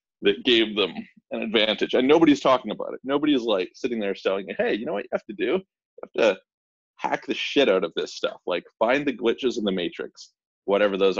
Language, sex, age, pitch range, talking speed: English, male, 30-49, 100-165 Hz, 225 wpm